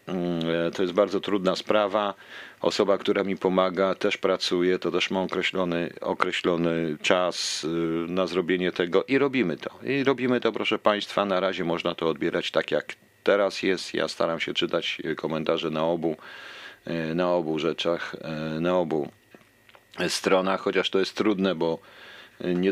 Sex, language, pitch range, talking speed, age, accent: male, Polish, 85-100 Hz, 150 wpm, 40-59, native